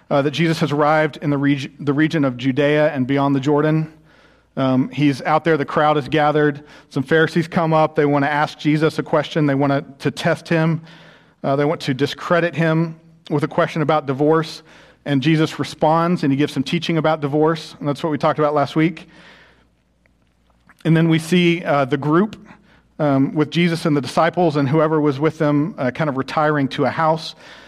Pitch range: 140-160 Hz